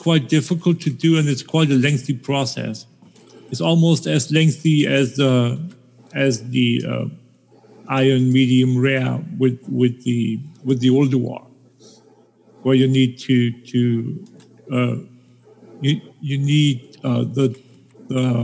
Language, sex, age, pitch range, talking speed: English, male, 50-69, 125-160 Hz, 135 wpm